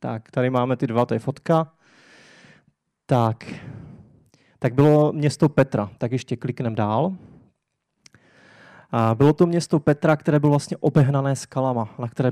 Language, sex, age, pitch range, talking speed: Czech, male, 20-39, 130-160 Hz, 140 wpm